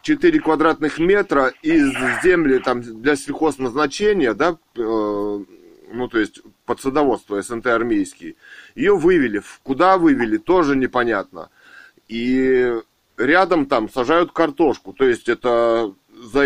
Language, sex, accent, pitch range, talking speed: Russian, male, native, 130-210 Hz, 115 wpm